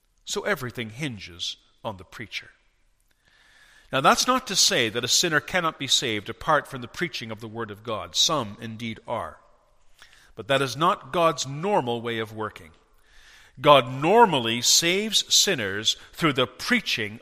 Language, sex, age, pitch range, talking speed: English, male, 50-69, 115-175 Hz, 155 wpm